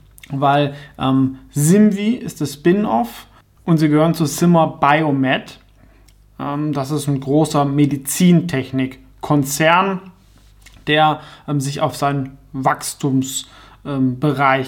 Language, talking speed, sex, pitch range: German, 100 wpm, male, 130-155 Hz